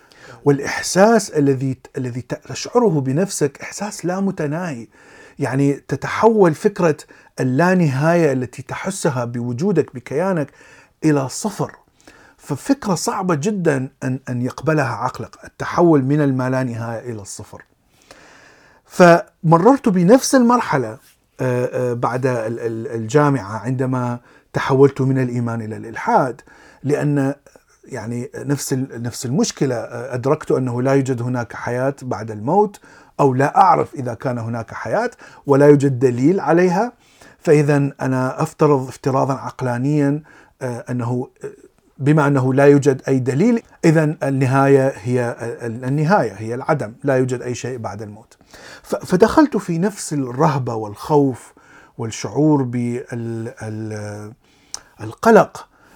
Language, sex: Arabic, male